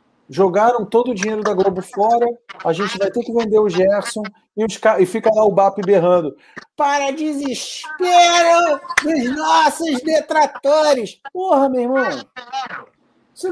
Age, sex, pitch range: 50-69, male, 185-275 Hz